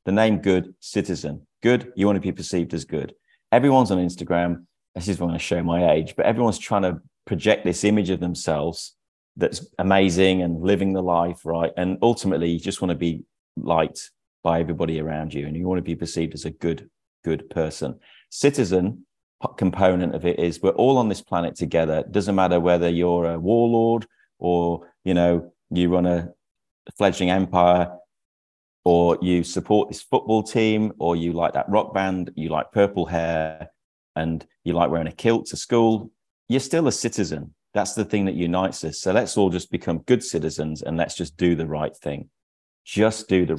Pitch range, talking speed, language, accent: 85-100 Hz, 190 wpm, English, British